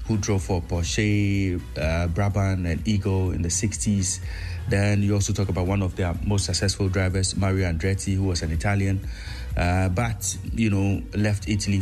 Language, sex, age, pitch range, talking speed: English, male, 30-49, 90-105 Hz, 175 wpm